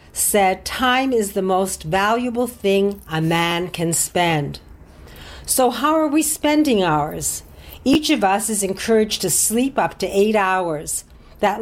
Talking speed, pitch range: 150 wpm, 180-240 Hz